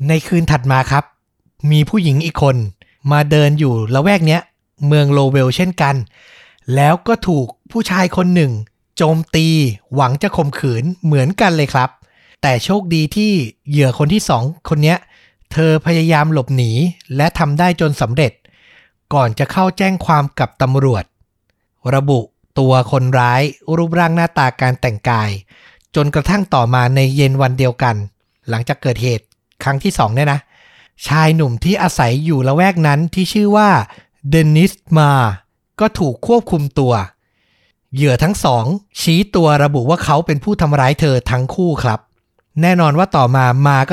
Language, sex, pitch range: Thai, male, 130-170 Hz